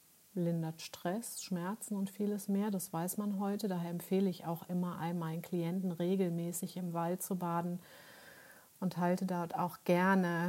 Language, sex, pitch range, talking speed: German, female, 170-200 Hz, 155 wpm